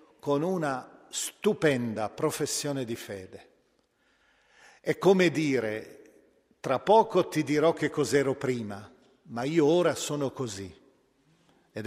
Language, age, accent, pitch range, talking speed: Italian, 50-69, native, 120-155 Hz, 110 wpm